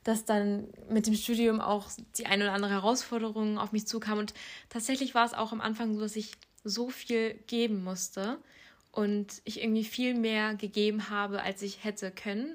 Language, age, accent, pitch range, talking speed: German, 20-39, German, 200-230 Hz, 185 wpm